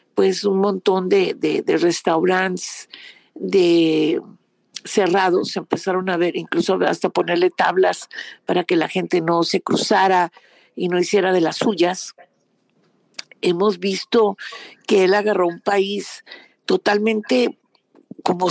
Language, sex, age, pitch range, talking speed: Spanish, female, 50-69, 185-230 Hz, 125 wpm